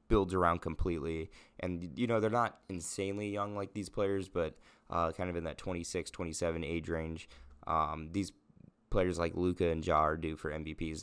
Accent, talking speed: American, 185 wpm